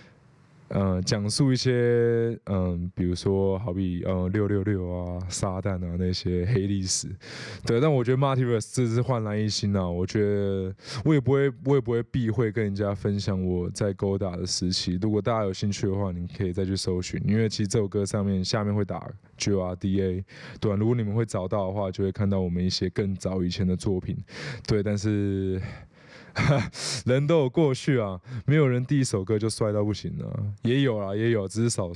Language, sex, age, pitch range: Chinese, male, 20-39, 95-120 Hz